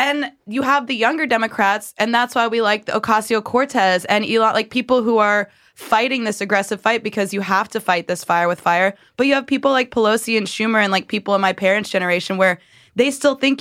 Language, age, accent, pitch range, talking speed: English, 20-39, American, 185-225 Hz, 225 wpm